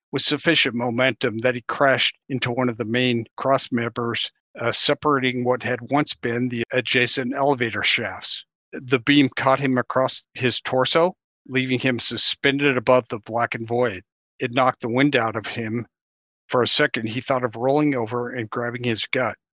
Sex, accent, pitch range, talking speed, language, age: male, American, 120-135 Hz, 170 wpm, English, 50-69